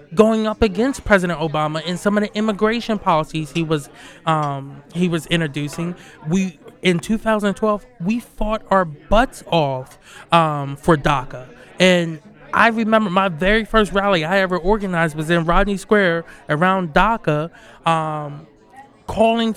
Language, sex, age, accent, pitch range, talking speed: English, male, 20-39, American, 165-215 Hz, 140 wpm